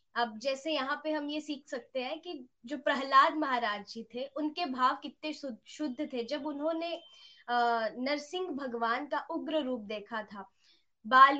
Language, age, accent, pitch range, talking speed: Hindi, 20-39, native, 250-310 Hz, 155 wpm